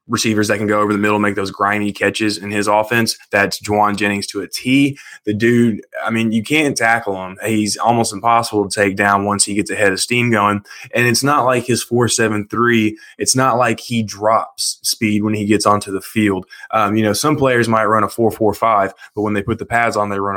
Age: 20-39